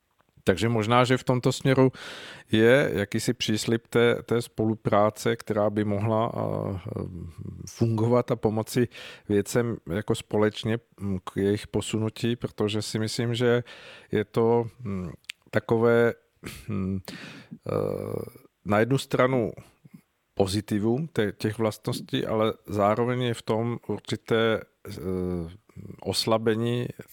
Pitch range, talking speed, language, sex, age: 100-115 Hz, 95 wpm, Czech, male, 50-69